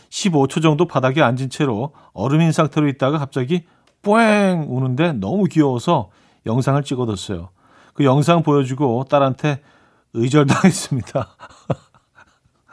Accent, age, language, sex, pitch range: native, 40-59, Korean, male, 120-160 Hz